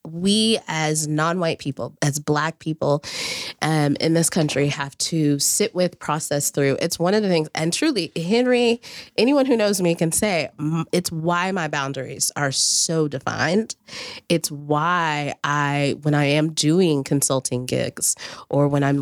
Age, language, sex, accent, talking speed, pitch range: 20-39, English, female, American, 160 wpm, 145-175 Hz